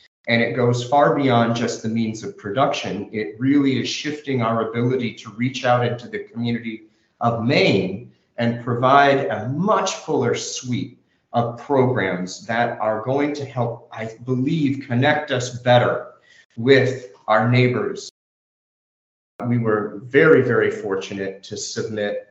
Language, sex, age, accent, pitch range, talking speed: English, male, 40-59, American, 105-130 Hz, 140 wpm